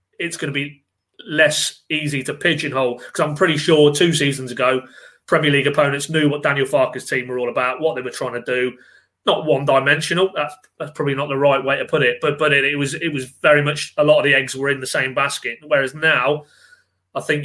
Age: 30-49